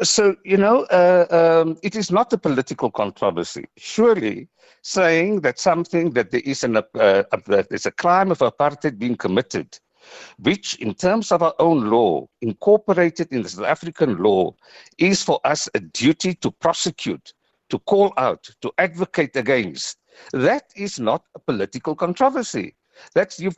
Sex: male